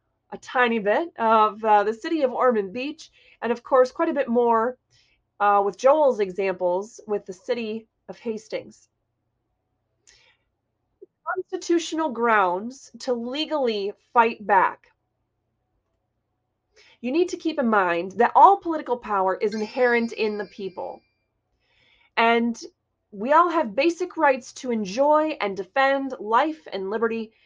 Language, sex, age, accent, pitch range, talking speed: English, female, 20-39, American, 190-285 Hz, 130 wpm